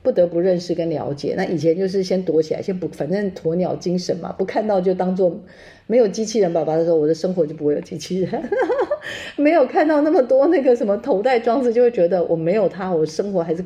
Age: 40-59